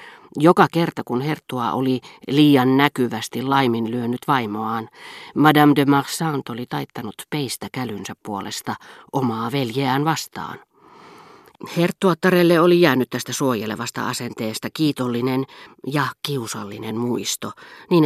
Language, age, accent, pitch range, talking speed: Finnish, 40-59, native, 120-170 Hz, 105 wpm